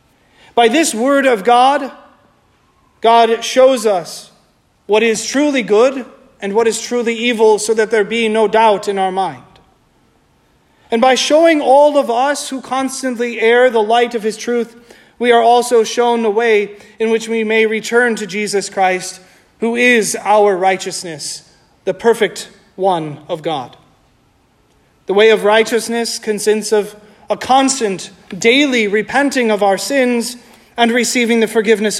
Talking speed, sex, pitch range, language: 150 wpm, male, 210-250 Hz, English